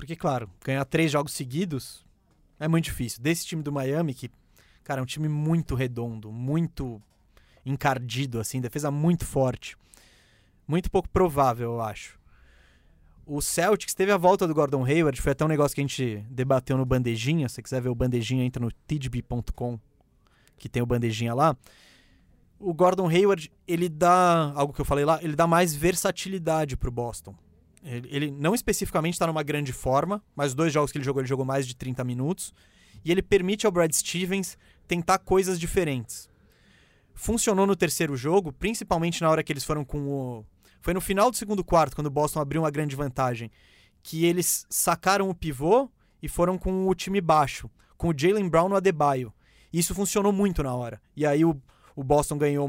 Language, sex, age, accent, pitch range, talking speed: Portuguese, male, 20-39, Brazilian, 130-175 Hz, 185 wpm